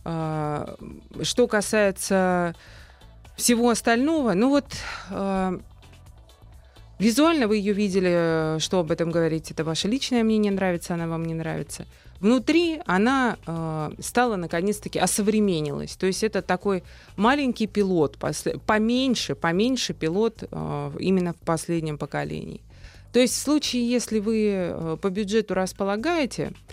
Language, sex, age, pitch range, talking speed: Russian, female, 20-39, 160-220 Hz, 120 wpm